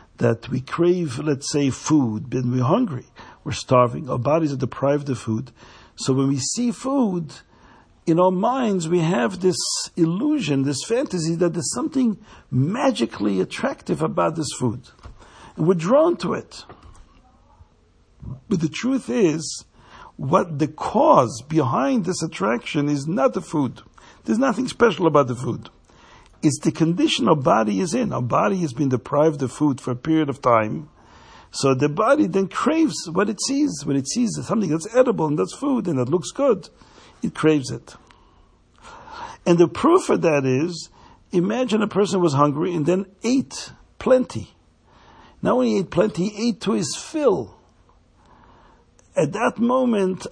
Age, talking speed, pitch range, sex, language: 60-79, 160 wpm, 130-210 Hz, male, English